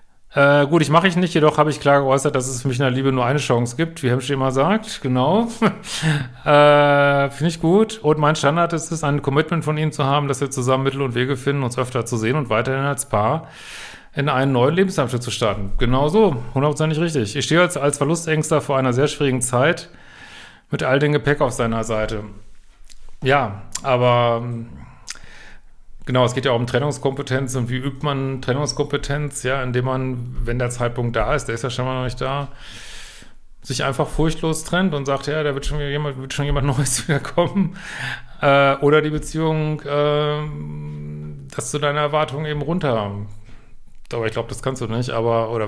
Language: German